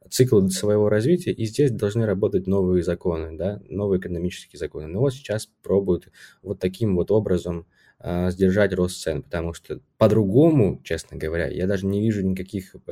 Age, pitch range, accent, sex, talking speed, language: 20-39, 90-115 Hz, native, male, 155 wpm, Russian